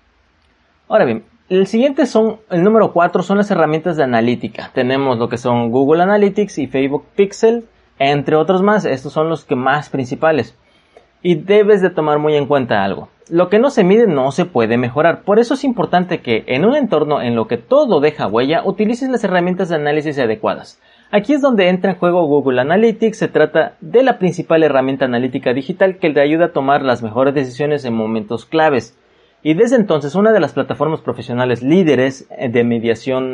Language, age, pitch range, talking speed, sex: Spanish, 30-49, 135-205 Hz, 190 wpm, male